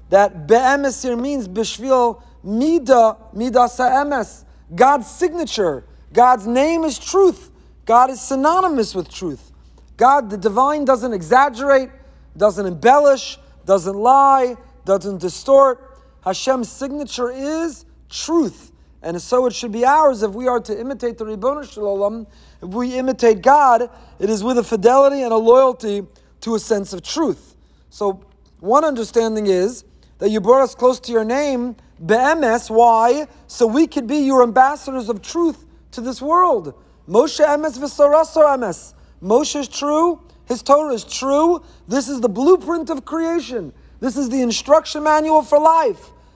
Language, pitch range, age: English, 230-285 Hz, 30-49